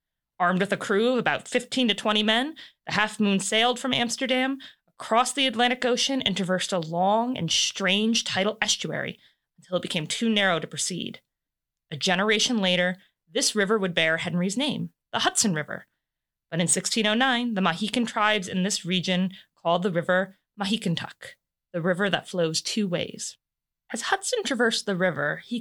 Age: 30-49